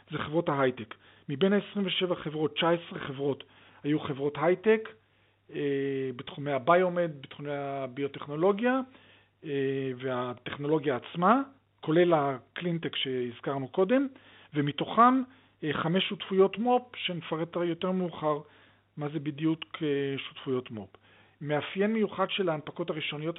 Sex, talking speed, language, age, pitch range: male, 95 wpm, Hebrew, 40-59, 135-175 Hz